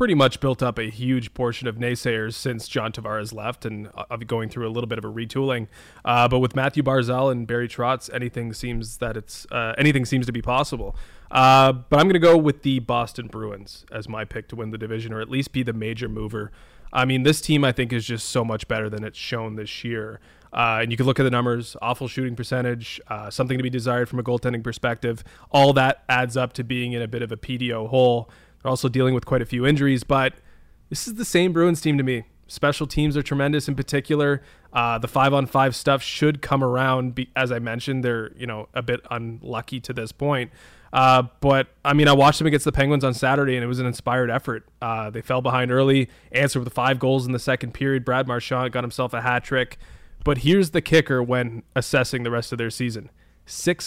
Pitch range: 115-135 Hz